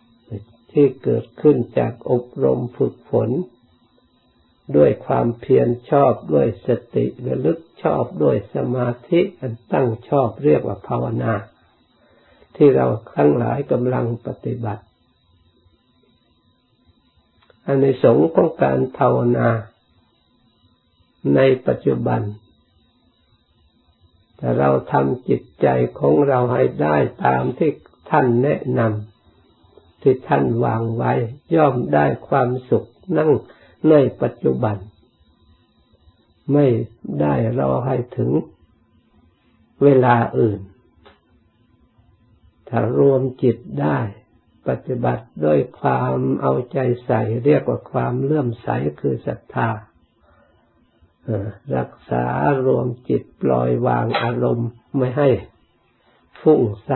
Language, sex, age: Thai, male, 60-79